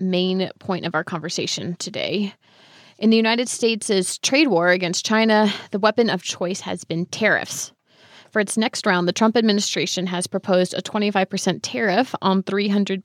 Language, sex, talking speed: English, female, 160 wpm